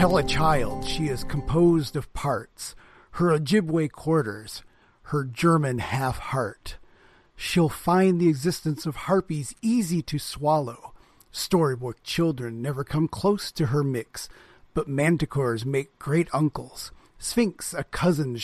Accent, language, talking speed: American, English, 125 wpm